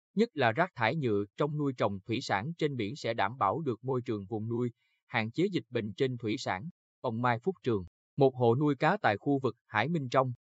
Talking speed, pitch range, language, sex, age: 235 wpm, 115-150 Hz, Vietnamese, male, 20-39